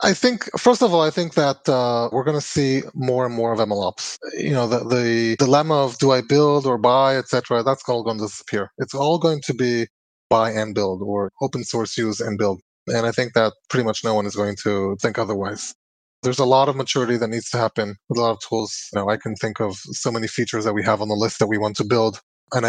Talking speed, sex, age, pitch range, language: 255 wpm, male, 20-39, 115-150 Hz, English